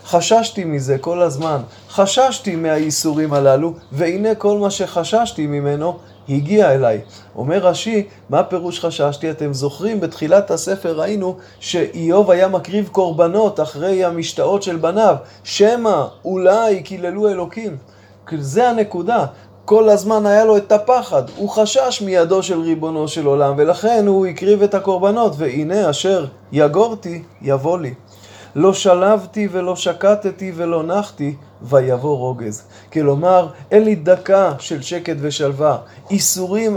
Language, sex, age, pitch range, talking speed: Hebrew, male, 20-39, 145-195 Hz, 125 wpm